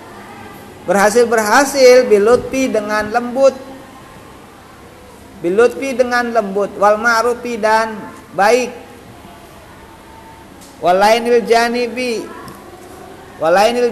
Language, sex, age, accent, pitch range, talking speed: Indonesian, male, 40-59, native, 205-245 Hz, 55 wpm